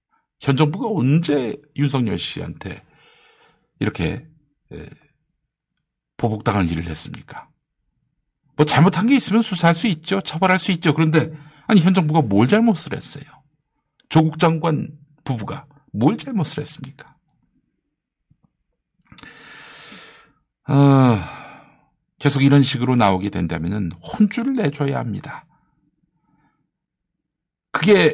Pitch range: 110-160 Hz